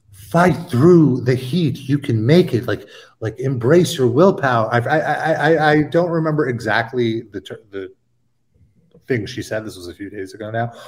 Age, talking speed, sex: 30-49, 190 wpm, male